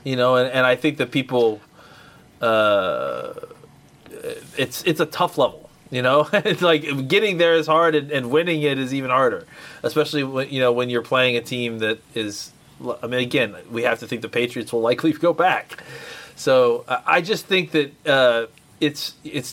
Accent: American